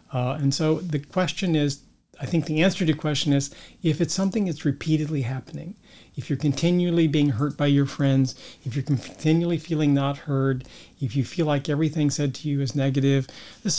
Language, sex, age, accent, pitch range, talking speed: English, male, 40-59, American, 135-165 Hz, 195 wpm